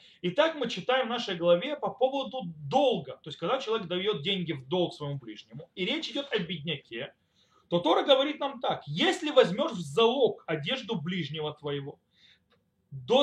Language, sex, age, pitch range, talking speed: Russian, male, 30-49, 180-265 Hz, 170 wpm